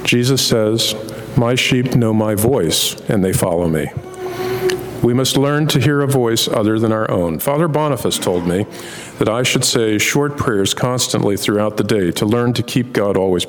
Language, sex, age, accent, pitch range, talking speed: English, male, 50-69, American, 105-135 Hz, 185 wpm